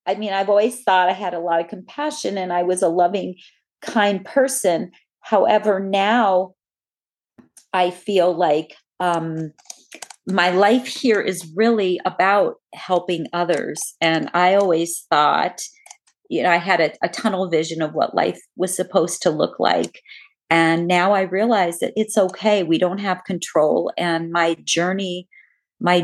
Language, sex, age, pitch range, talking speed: English, female, 40-59, 170-210 Hz, 155 wpm